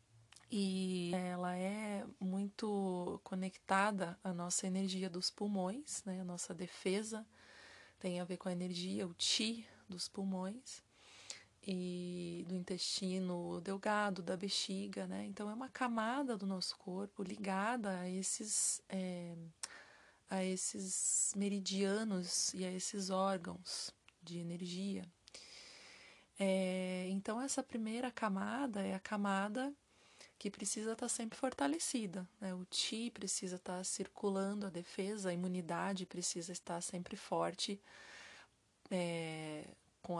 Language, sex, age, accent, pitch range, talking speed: Portuguese, female, 30-49, Brazilian, 180-210 Hz, 120 wpm